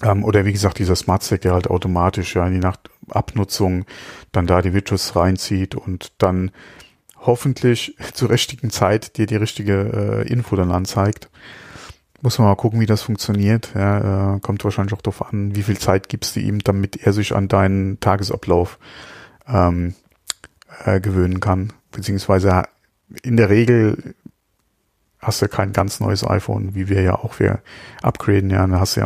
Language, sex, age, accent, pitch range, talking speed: German, male, 40-59, German, 95-110 Hz, 165 wpm